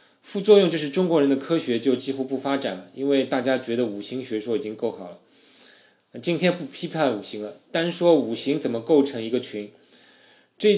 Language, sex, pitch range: Chinese, male, 120-165 Hz